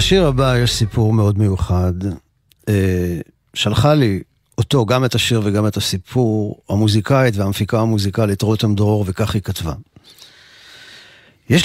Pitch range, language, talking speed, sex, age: 105-130 Hz, Hebrew, 125 wpm, male, 50-69